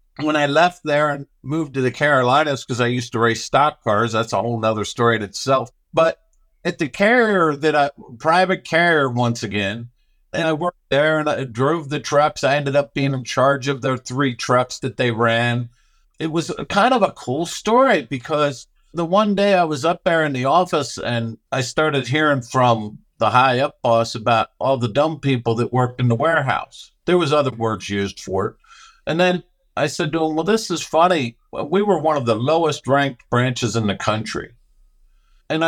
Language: English